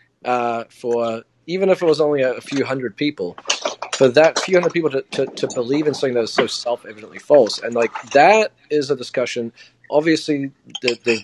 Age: 30-49